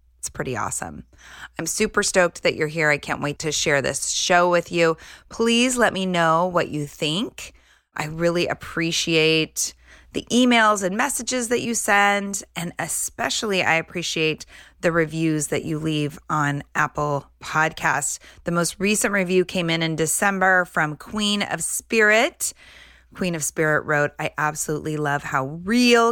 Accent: American